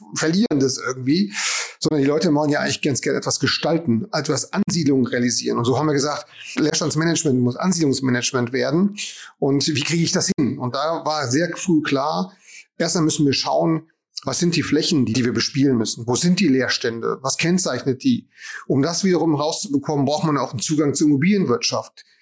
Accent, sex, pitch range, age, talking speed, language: German, male, 140-175 Hz, 30-49, 180 wpm, German